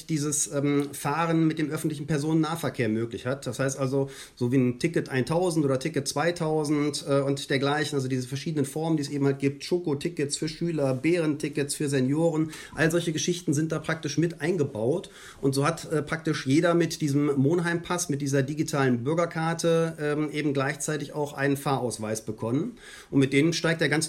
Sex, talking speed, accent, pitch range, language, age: male, 180 wpm, German, 135-165 Hz, German, 40-59